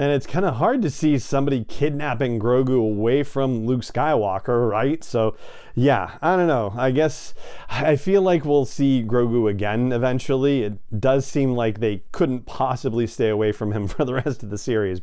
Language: English